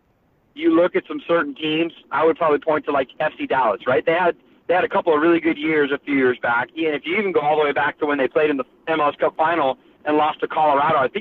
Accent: American